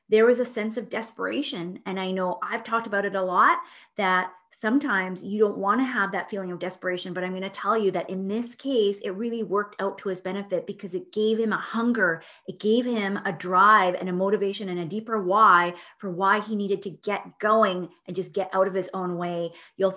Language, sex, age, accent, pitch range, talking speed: English, female, 30-49, American, 180-225 Hz, 230 wpm